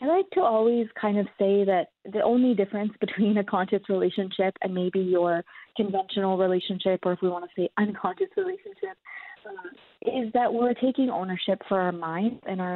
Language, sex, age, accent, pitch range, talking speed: English, female, 20-39, American, 185-225 Hz, 185 wpm